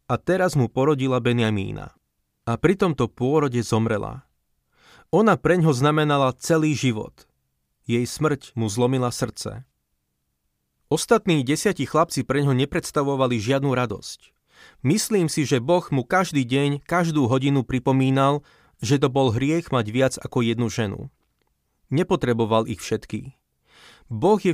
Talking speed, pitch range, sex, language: 130 wpm, 120-155 Hz, male, Slovak